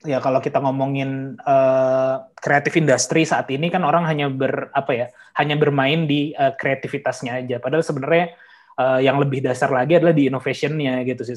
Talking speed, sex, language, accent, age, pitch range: 175 wpm, male, Indonesian, native, 20-39, 135-160 Hz